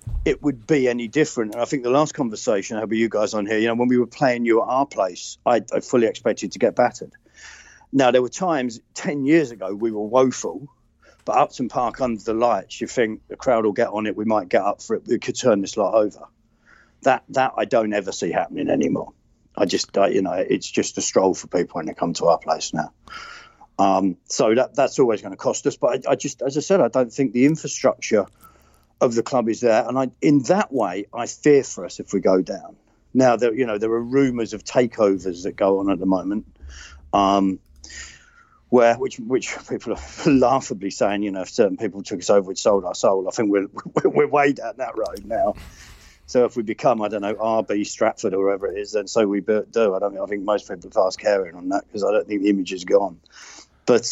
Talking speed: 240 wpm